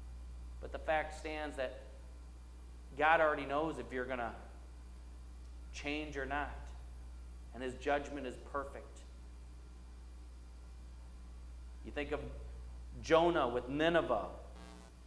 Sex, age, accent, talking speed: male, 40-59, American, 105 wpm